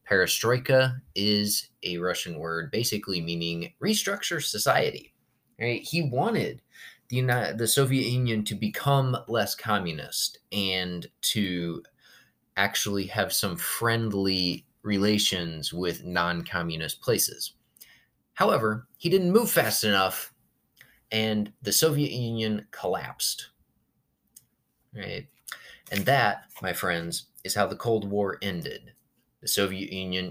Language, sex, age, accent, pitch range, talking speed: English, male, 20-39, American, 90-125 Hz, 115 wpm